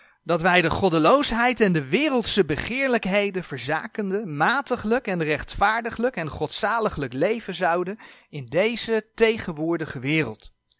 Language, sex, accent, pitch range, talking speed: Dutch, male, Dutch, 160-235 Hz, 110 wpm